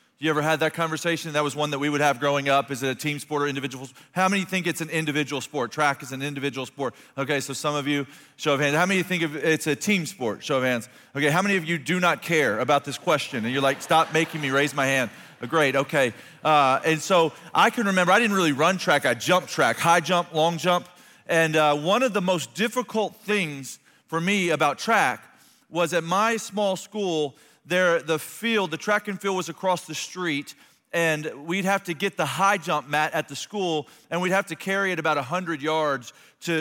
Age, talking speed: 40-59, 235 wpm